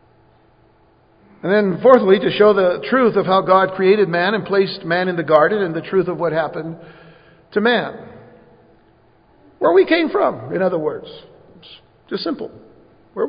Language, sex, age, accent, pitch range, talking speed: English, male, 60-79, American, 195-255 Hz, 165 wpm